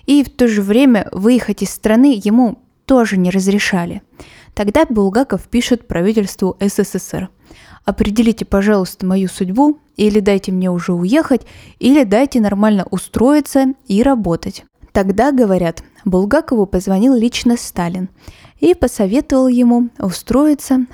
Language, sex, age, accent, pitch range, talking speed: Russian, female, 10-29, native, 190-245 Hz, 120 wpm